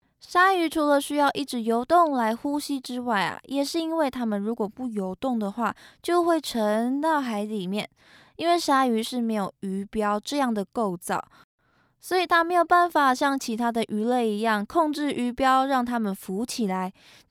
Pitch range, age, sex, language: 205-280 Hz, 20-39, female, Chinese